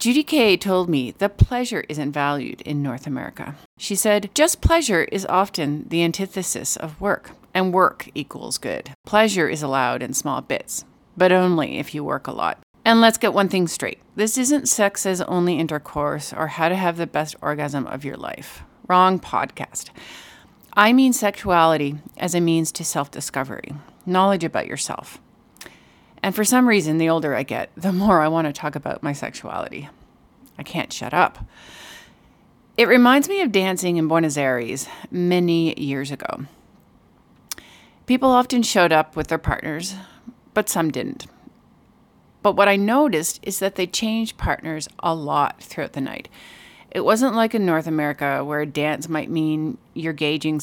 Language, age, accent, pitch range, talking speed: English, 40-59, American, 150-205 Hz, 165 wpm